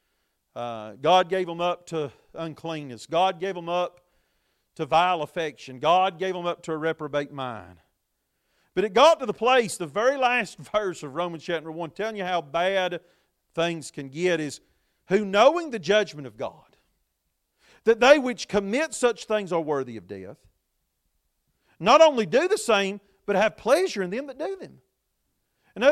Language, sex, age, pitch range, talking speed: English, male, 40-59, 145-230 Hz, 170 wpm